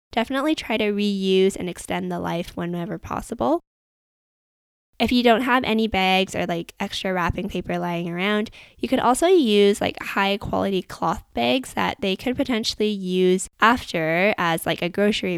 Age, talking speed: 10-29, 165 wpm